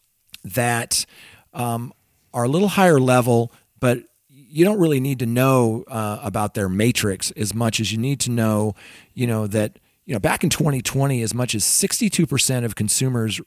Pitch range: 105-135 Hz